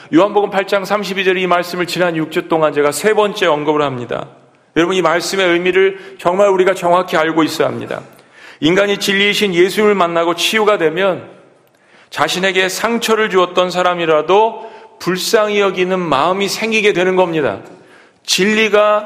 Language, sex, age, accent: Korean, male, 40-59, native